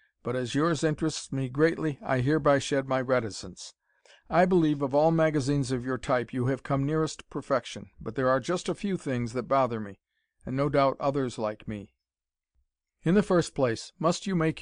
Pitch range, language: 125-150 Hz, English